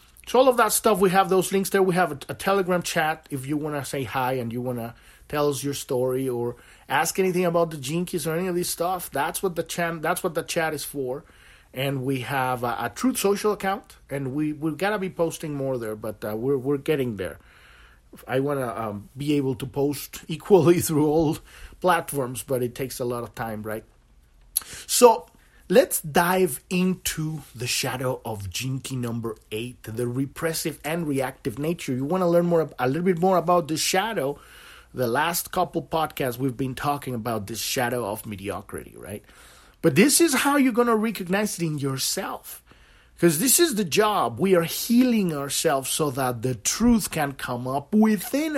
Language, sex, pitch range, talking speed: English, male, 130-180 Hz, 195 wpm